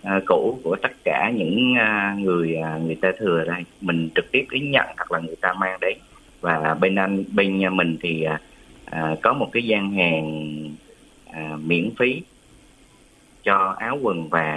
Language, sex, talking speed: Vietnamese, male, 180 wpm